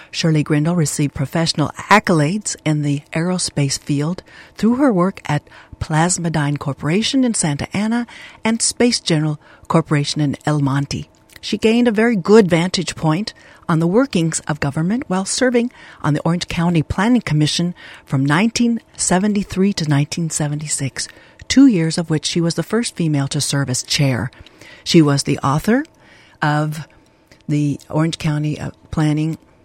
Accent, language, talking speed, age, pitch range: American, English, 145 wpm, 60-79, 150-205 Hz